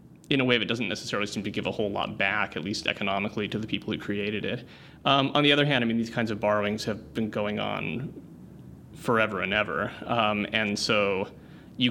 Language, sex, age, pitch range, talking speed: English, male, 30-49, 100-115 Hz, 220 wpm